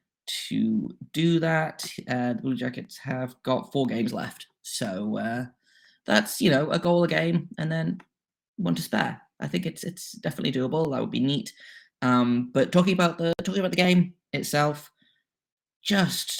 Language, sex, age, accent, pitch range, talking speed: English, male, 20-39, British, 125-175 Hz, 170 wpm